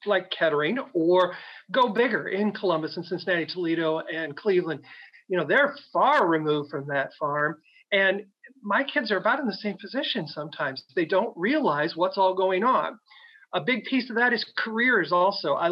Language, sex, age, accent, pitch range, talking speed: English, male, 40-59, American, 170-225 Hz, 175 wpm